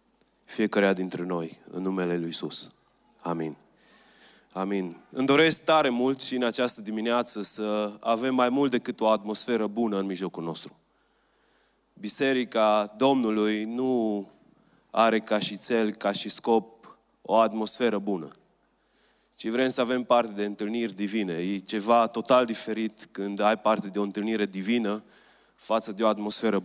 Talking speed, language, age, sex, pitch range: 145 wpm, Romanian, 30-49, male, 105-120 Hz